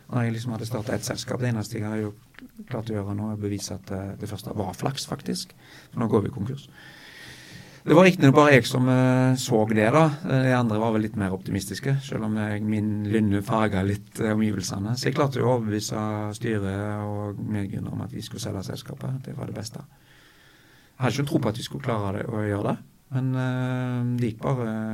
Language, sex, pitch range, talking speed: English, male, 105-130 Hz, 205 wpm